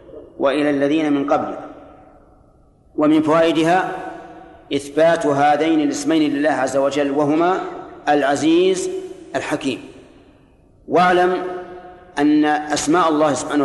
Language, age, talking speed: Arabic, 50-69, 90 wpm